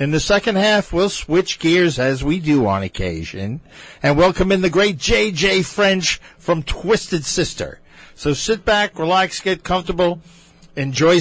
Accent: American